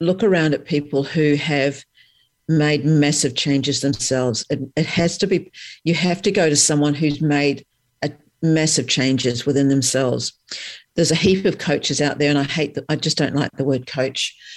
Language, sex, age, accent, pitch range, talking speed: English, female, 50-69, Australian, 140-155 Hz, 190 wpm